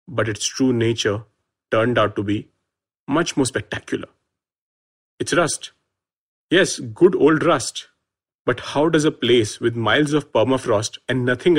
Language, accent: English, Indian